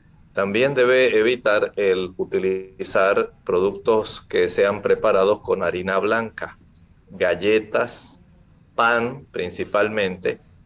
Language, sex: Spanish, male